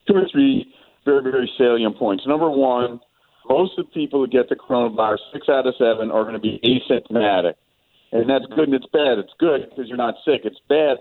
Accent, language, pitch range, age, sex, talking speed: American, English, 110-145 Hz, 50-69, male, 220 wpm